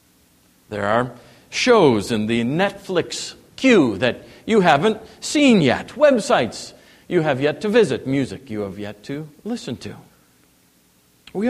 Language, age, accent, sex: English, 50-69, American, male